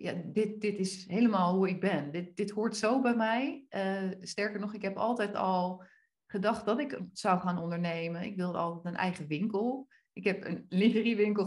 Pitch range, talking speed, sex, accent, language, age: 190-260 Hz, 195 wpm, female, Dutch, Dutch, 30-49